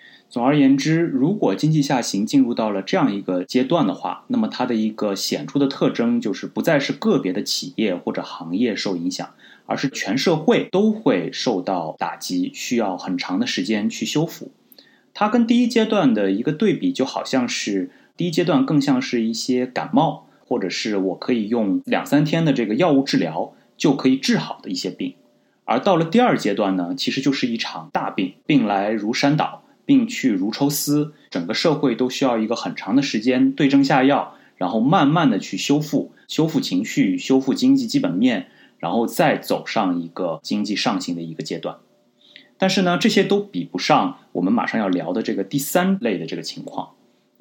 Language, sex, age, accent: Chinese, male, 30-49, native